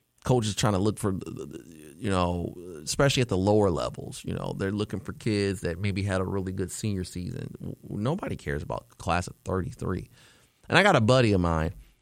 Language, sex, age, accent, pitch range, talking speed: English, male, 30-49, American, 90-110 Hz, 200 wpm